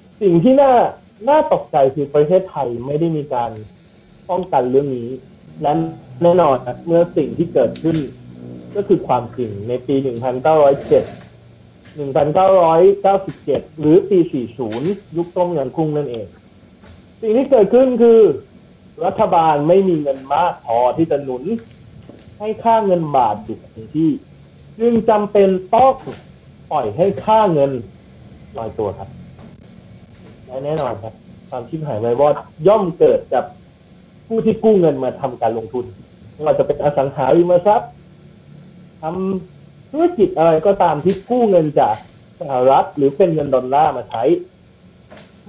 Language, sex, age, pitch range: Thai, male, 30-49, 140-220 Hz